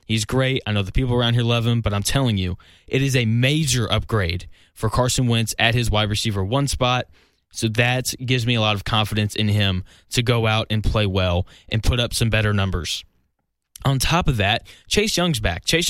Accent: American